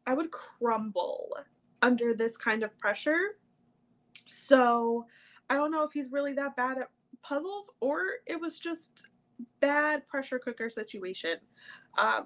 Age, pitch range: 20-39, 225-285 Hz